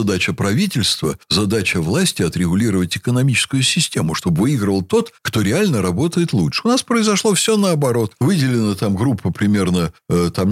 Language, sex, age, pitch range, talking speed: Russian, male, 60-79, 100-155 Hz, 135 wpm